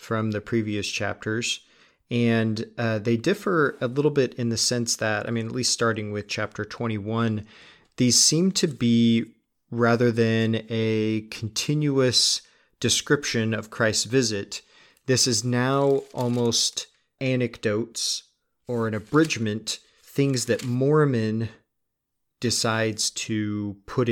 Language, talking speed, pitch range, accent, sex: English, 120 wpm, 105-120 Hz, American, male